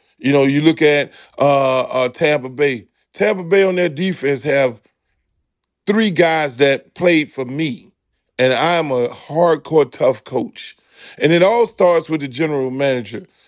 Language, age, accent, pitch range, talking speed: English, 40-59, American, 145-185 Hz, 155 wpm